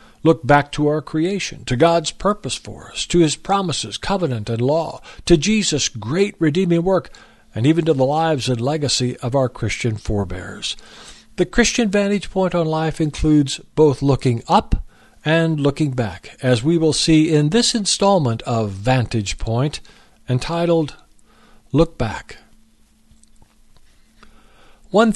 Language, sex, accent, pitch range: English, male, American, 115-165 Hz